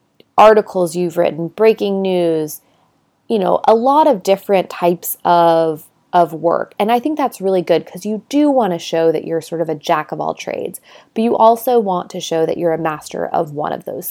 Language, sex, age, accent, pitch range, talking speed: English, female, 20-39, American, 170-210 Hz, 215 wpm